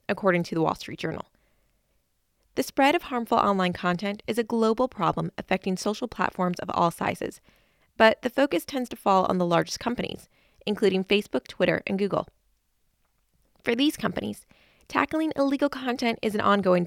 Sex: female